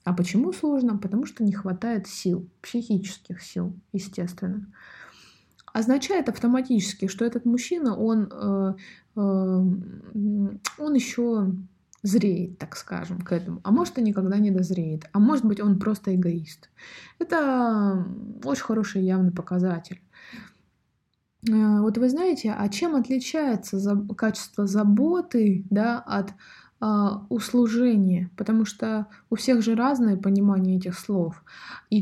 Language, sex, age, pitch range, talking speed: Russian, female, 20-39, 195-240 Hz, 115 wpm